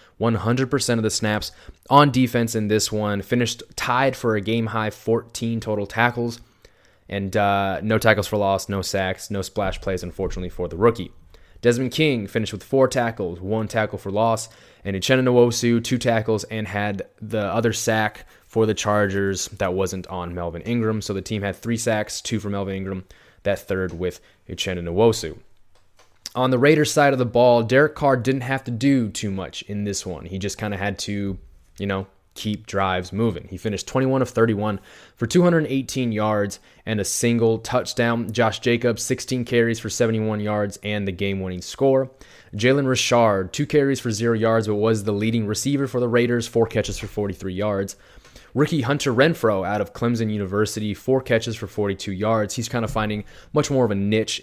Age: 20-39